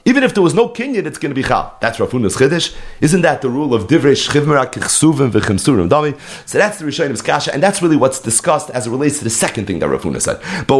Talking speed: 250 wpm